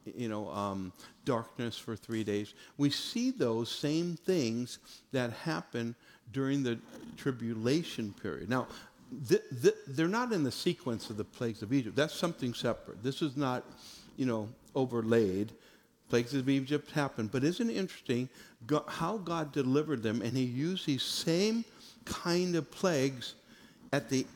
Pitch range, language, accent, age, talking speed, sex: 120-165 Hz, English, American, 60-79, 150 wpm, male